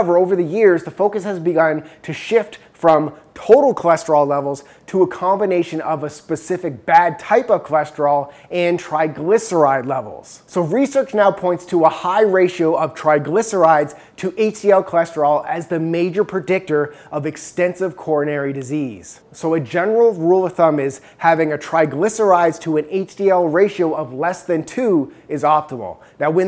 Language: English